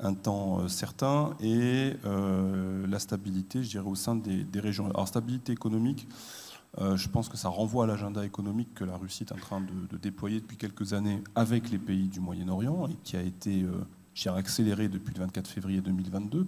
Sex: male